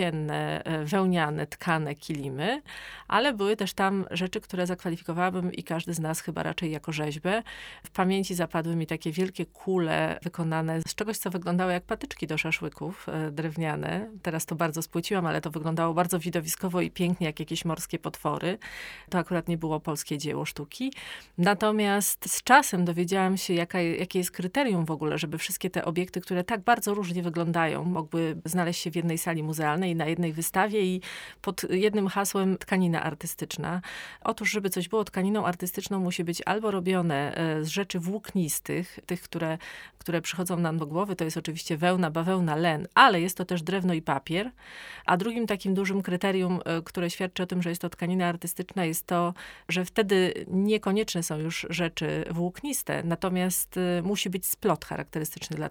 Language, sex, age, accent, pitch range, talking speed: Polish, female, 30-49, native, 165-195 Hz, 170 wpm